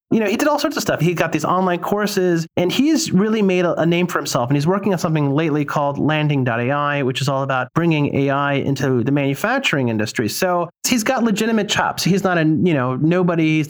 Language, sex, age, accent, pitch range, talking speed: English, male, 30-49, American, 140-180 Hz, 230 wpm